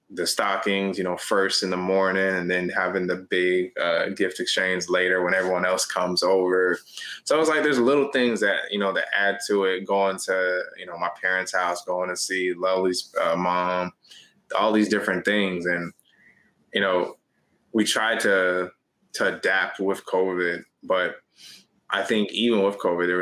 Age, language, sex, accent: 20-39, English, male, American